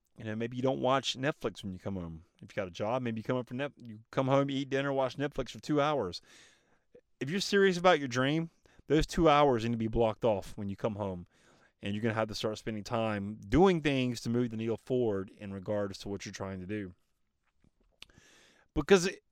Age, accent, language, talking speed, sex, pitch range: 30-49, American, English, 235 wpm, male, 110-165 Hz